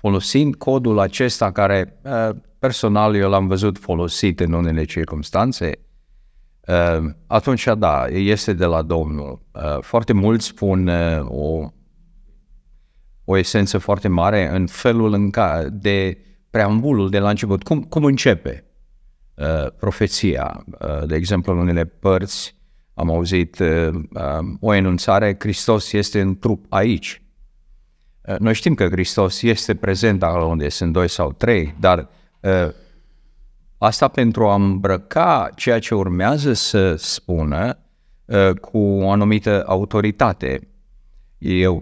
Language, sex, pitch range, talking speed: Romanian, male, 85-115 Hz, 120 wpm